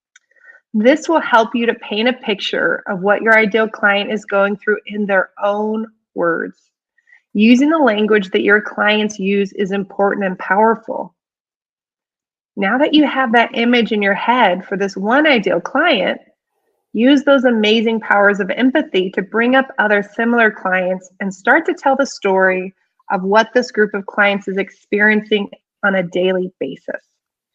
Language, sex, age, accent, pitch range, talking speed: English, female, 20-39, American, 200-260 Hz, 165 wpm